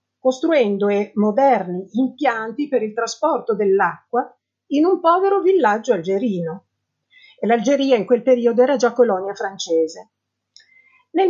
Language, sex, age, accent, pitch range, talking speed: Italian, female, 50-69, native, 200-300 Hz, 120 wpm